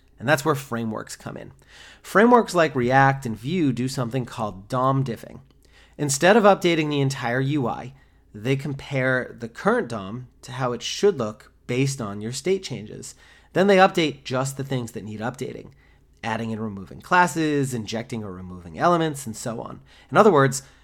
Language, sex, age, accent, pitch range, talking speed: English, male, 30-49, American, 115-150 Hz, 175 wpm